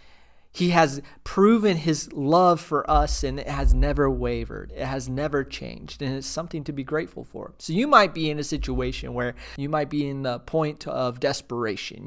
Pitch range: 110-150 Hz